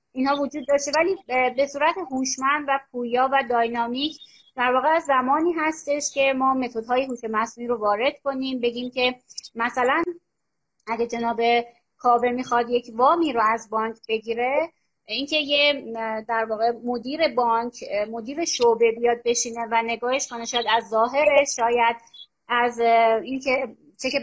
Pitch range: 235-280 Hz